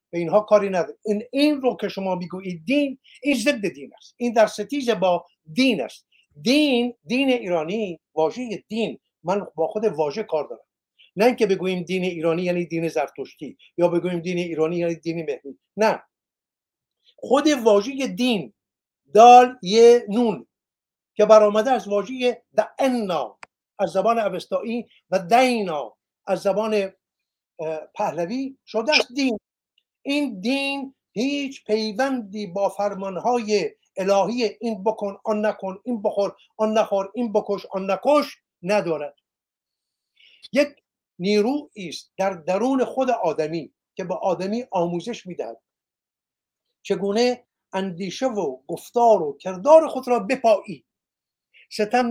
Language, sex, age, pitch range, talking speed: Persian, male, 50-69, 185-245 Hz, 125 wpm